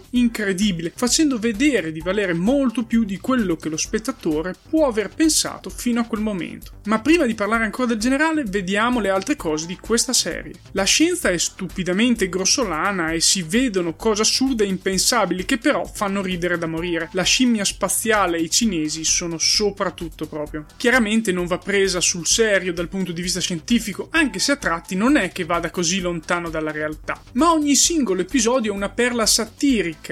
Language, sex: Italian, male